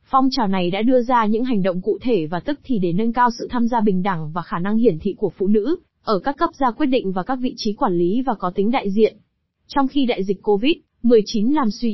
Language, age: Vietnamese, 20-39